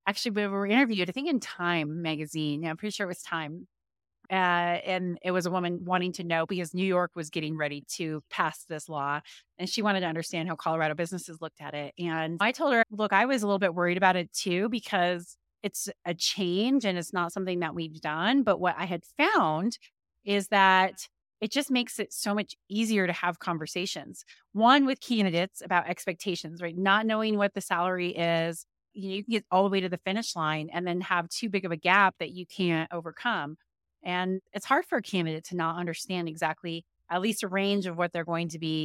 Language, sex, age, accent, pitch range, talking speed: English, female, 30-49, American, 165-200 Hz, 220 wpm